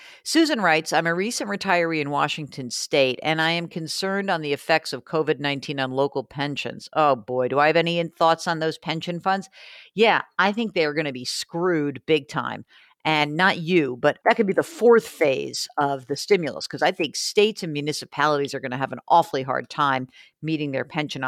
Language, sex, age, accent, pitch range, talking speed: English, female, 50-69, American, 140-180 Hz, 205 wpm